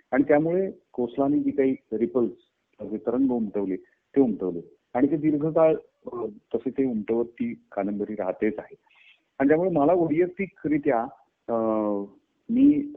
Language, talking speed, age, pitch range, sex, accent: Marathi, 115 wpm, 30-49, 110-145 Hz, male, native